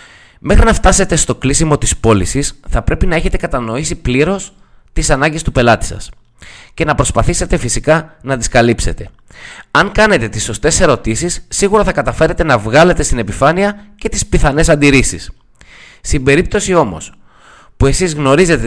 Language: Greek